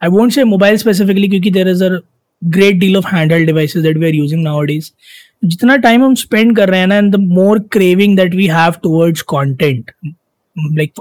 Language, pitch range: Hindi, 165-210 Hz